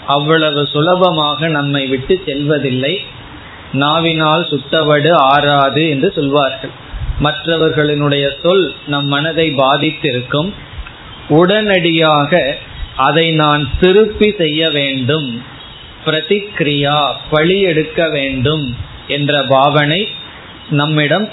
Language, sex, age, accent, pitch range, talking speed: Tamil, male, 20-39, native, 140-170 Hz, 70 wpm